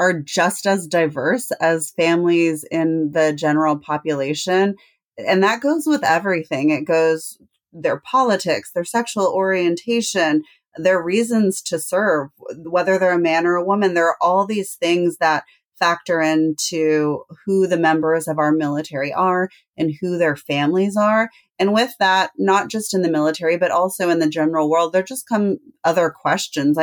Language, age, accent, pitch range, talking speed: English, 30-49, American, 155-185 Hz, 160 wpm